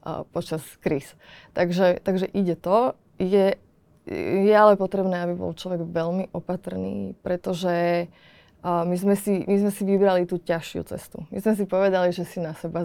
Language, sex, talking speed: Slovak, female, 160 wpm